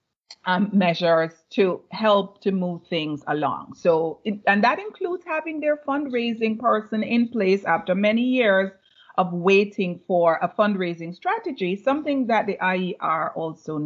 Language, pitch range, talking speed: English, 180-230 Hz, 140 wpm